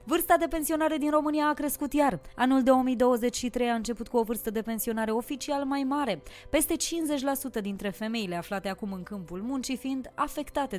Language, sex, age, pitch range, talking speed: Romanian, female, 20-39, 210-290 Hz, 170 wpm